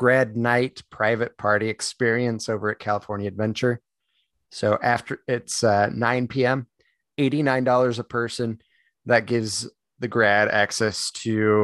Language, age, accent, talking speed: English, 30-49, American, 125 wpm